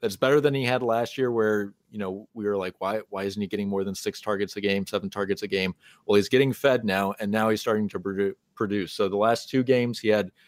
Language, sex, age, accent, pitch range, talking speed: English, male, 30-49, American, 100-120 Hz, 265 wpm